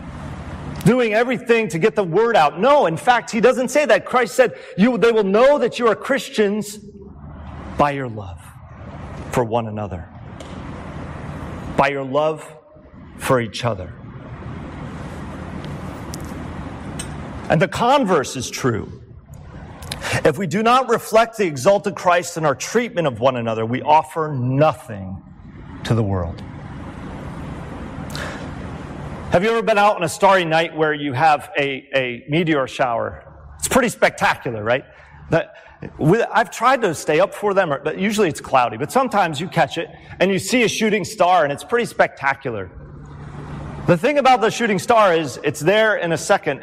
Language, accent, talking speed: English, American, 155 wpm